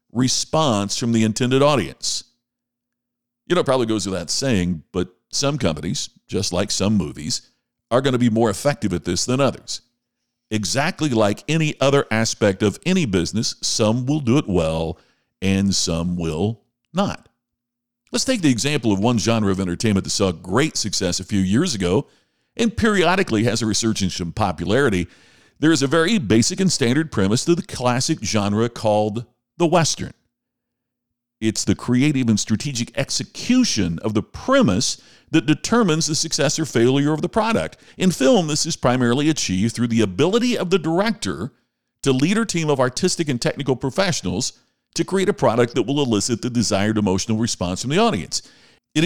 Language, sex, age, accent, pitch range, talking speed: English, male, 50-69, American, 110-155 Hz, 170 wpm